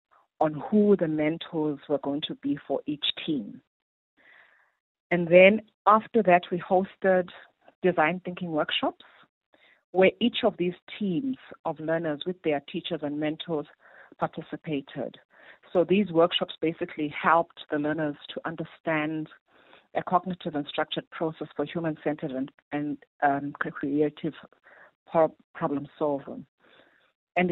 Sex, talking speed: female, 120 wpm